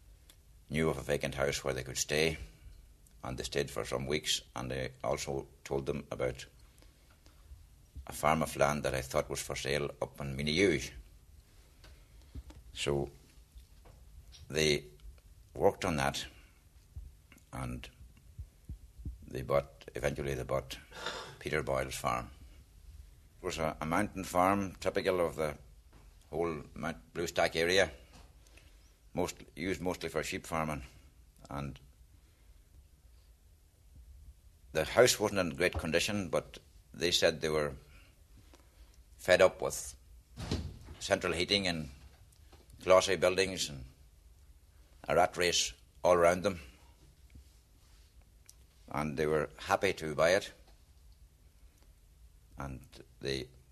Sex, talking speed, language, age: male, 115 wpm, English, 60-79